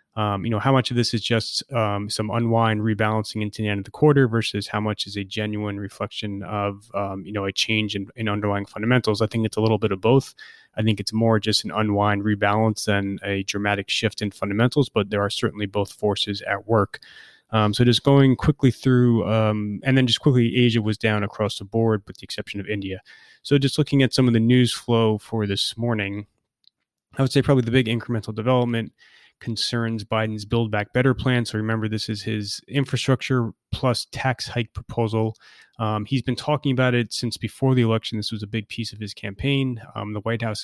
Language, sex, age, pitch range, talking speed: English, male, 20-39, 105-120 Hz, 215 wpm